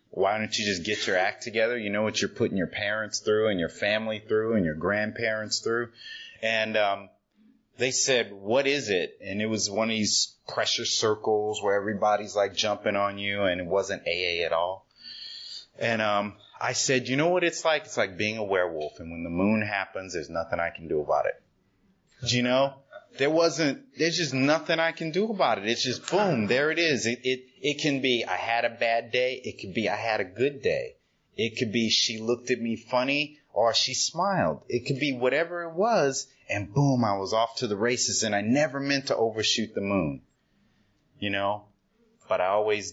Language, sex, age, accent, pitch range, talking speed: English, male, 30-49, American, 100-135 Hz, 210 wpm